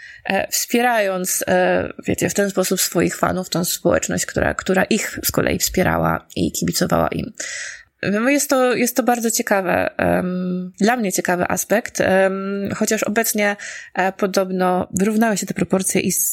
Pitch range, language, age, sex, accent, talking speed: 185-230 Hz, Polish, 20-39, female, native, 145 wpm